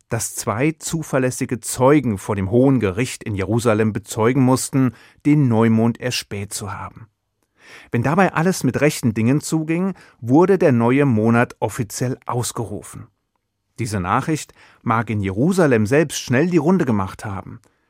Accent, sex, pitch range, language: German, male, 110-140 Hz, German